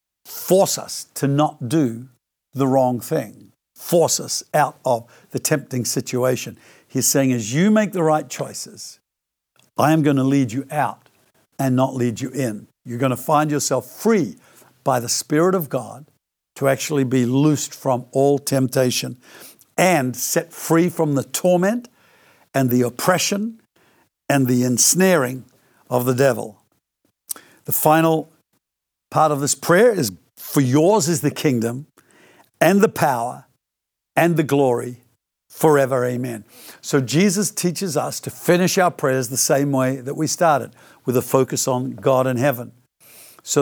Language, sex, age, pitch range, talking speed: English, male, 60-79, 125-160 Hz, 150 wpm